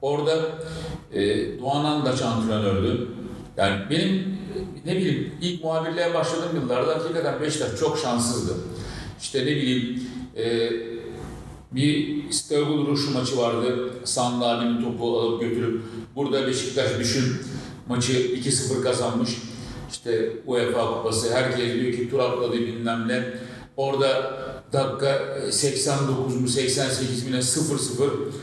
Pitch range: 125-165 Hz